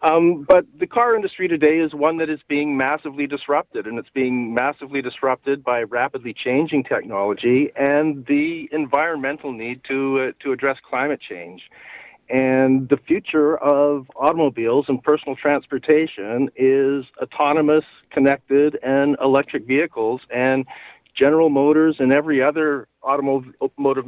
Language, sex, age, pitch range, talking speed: English, male, 50-69, 125-150 Hz, 130 wpm